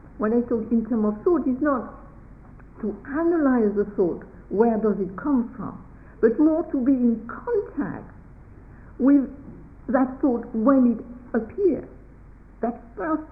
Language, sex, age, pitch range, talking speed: English, female, 60-79, 215-285 Hz, 145 wpm